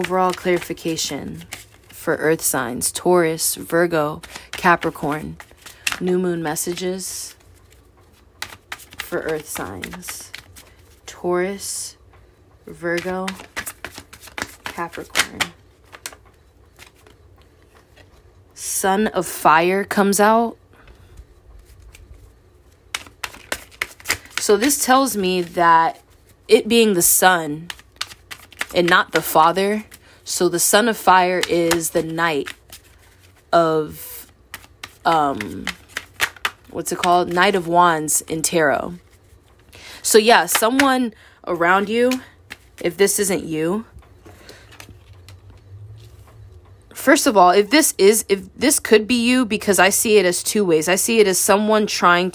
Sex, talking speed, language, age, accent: female, 100 wpm, English, 20-39, American